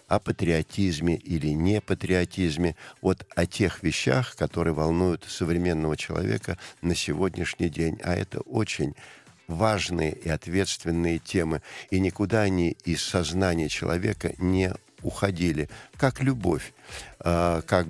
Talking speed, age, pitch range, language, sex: 115 wpm, 50-69, 80-95 Hz, Russian, male